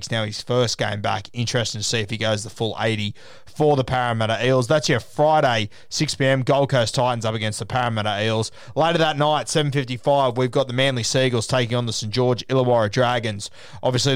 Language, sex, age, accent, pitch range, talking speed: English, male, 20-39, Australian, 115-140 Hz, 200 wpm